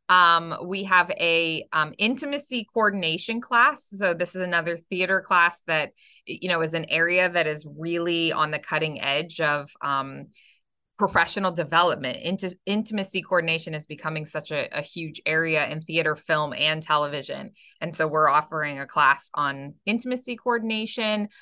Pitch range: 155-205 Hz